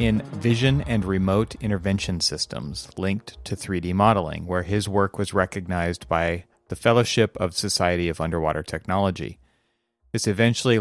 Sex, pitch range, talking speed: male, 90-110 Hz, 140 wpm